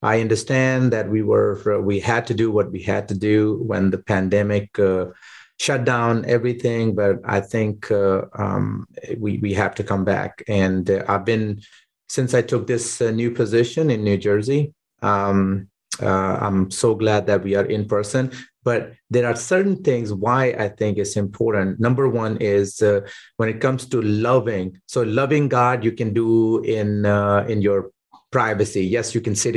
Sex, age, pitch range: male, 30-49, 100-125 Hz